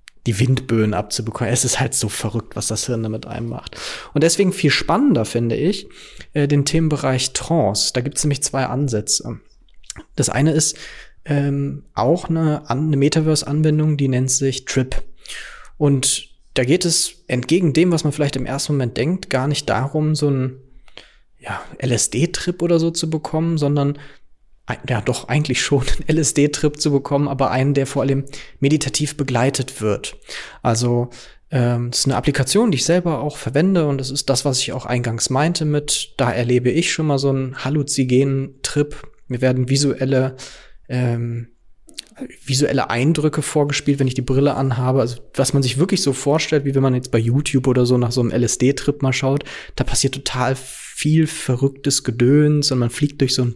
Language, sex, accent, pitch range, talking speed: German, male, German, 125-150 Hz, 175 wpm